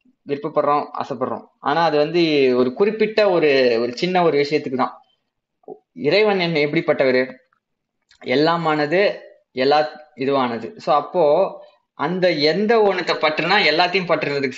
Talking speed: 110 wpm